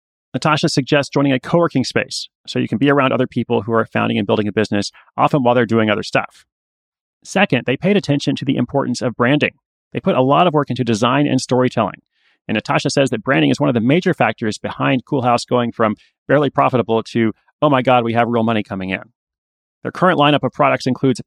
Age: 30-49